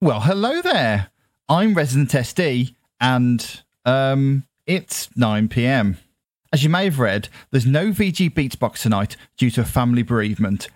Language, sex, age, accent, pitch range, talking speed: English, male, 40-59, British, 115-155 Hz, 145 wpm